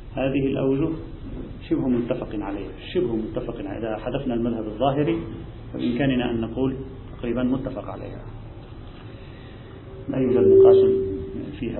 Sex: male